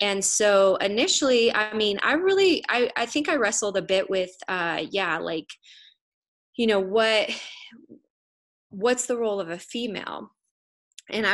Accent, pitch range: American, 180-225 Hz